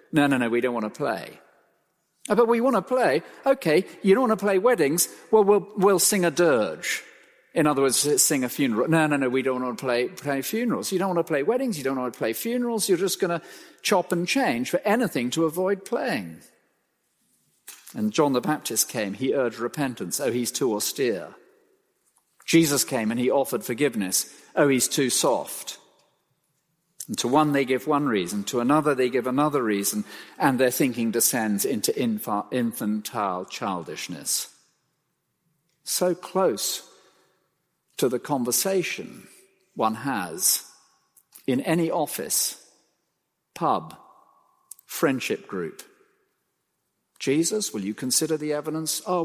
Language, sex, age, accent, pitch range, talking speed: English, male, 50-69, British, 135-210 Hz, 155 wpm